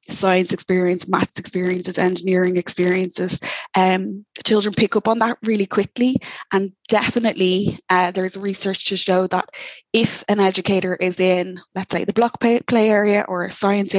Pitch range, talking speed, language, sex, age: 180-200 Hz, 160 wpm, English, female, 20-39